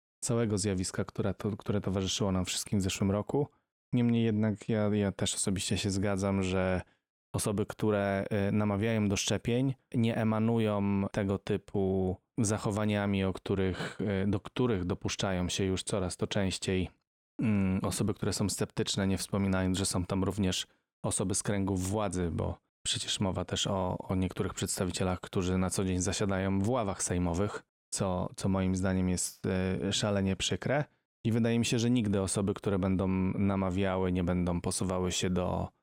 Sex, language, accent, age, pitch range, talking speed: male, Polish, native, 20-39, 95-105 Hz, 150 wpm